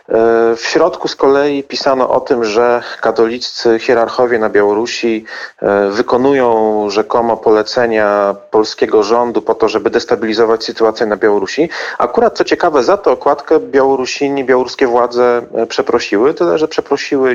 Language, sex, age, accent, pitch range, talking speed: Polish, male, 40-59, native, 110-135 Hz, 130 wpm